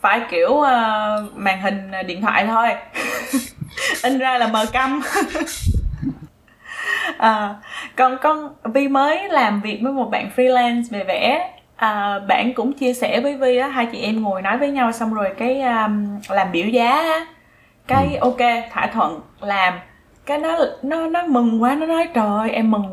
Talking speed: 170 wpm